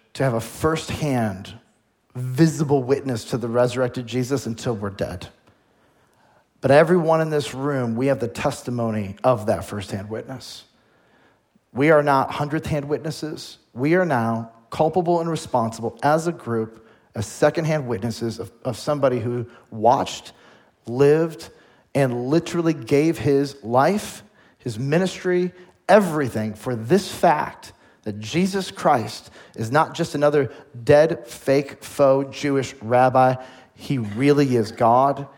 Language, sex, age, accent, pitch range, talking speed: English, male, 40-59, American, 115-155 Hz, 130 wpm